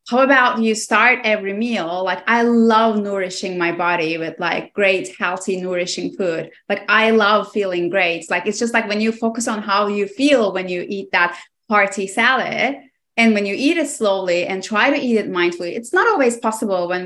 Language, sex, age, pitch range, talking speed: English, female, 20-39, 185-240 Hz, 205 wpm